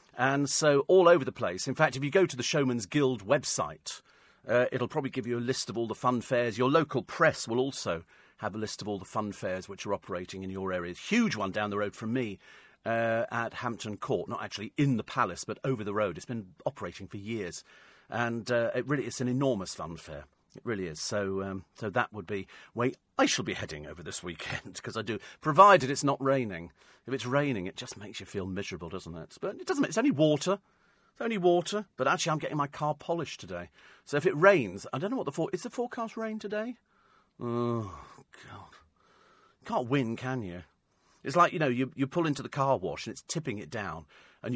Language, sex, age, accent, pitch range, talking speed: English, male, 40-59, British, 105-150 Hz, 235 wpm